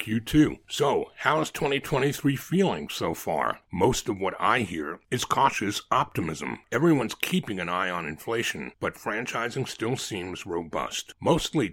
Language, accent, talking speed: English, American, 155 wpm